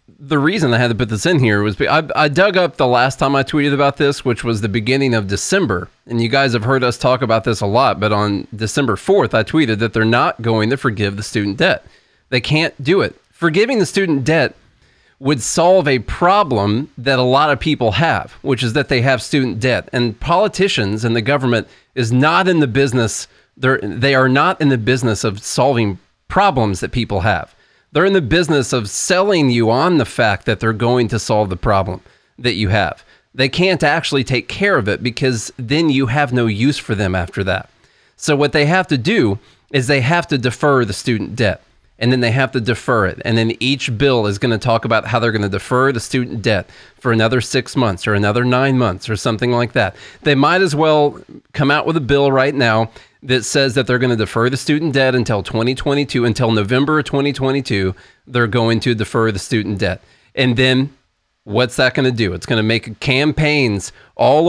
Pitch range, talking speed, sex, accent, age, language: 110-145 Hz, 220 wpm, male, American, 30-49, English